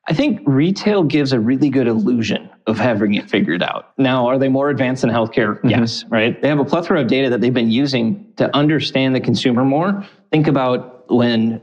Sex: male